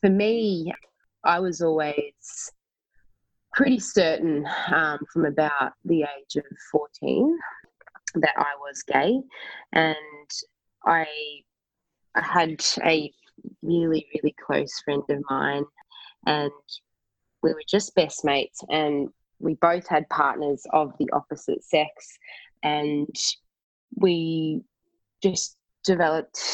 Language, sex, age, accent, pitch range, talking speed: English, female, 20-39, Australian, 150-195 Hz, 105 wpm